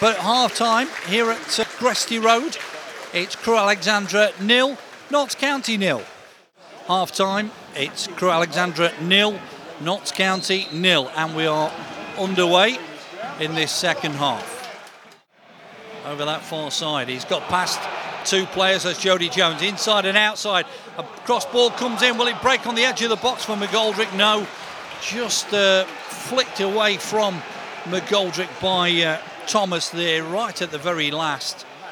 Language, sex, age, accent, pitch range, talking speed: English, male, 50-69, British, 170-210 Hz, 145 wpm